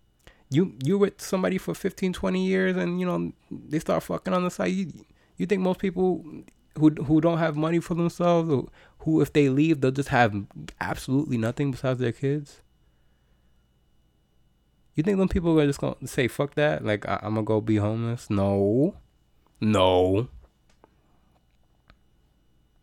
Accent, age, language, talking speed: American, 20-39, English, 165 wpm